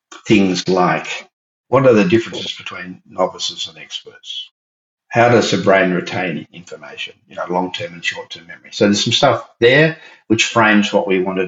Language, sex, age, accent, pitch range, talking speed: English, male, 60-79, Australian, 95-110 Hz, 175 wpm